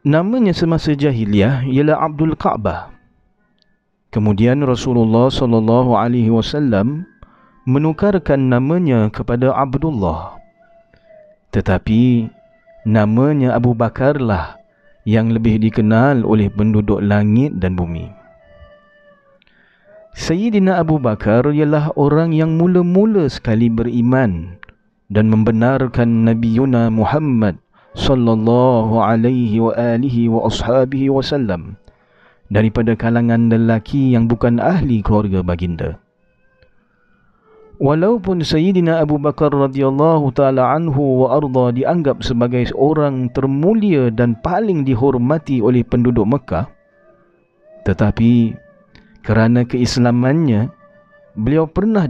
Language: Malay